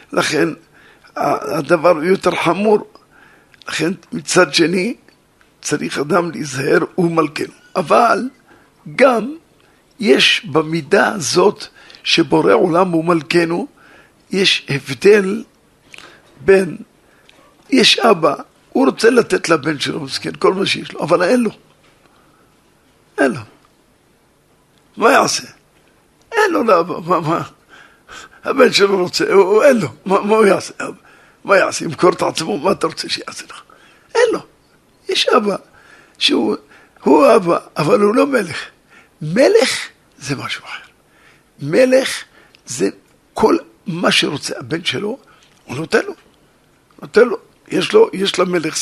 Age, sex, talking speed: 50-69, male, 120 wpm